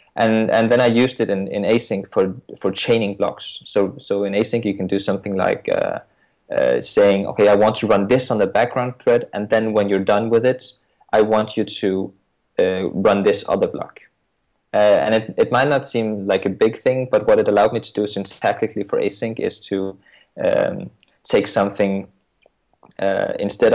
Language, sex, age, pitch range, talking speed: English, male, 20-39, 100-115 Hz, 200 wpm